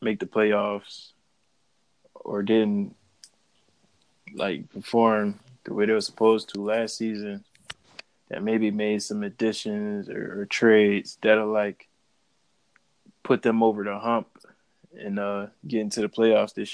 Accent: American